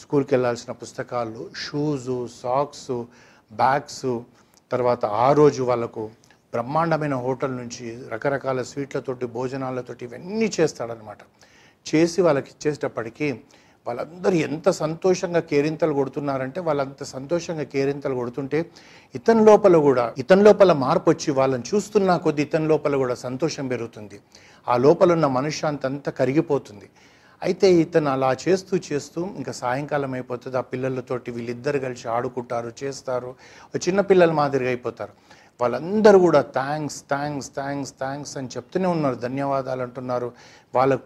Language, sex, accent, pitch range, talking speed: Telugu, male, native, 125-150 Hz, 115 wpm